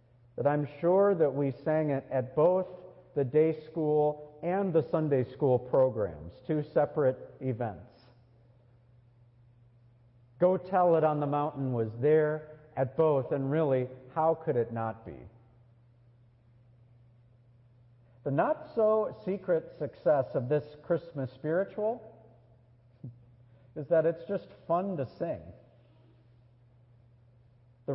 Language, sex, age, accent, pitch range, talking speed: English, male, 50-69, American, 120-160 Hz, 115 wpm